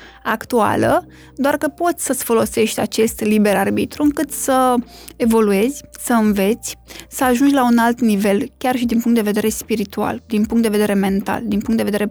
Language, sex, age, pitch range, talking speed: Romanian, female, 20-39, 215-260 Hz, 180 wpm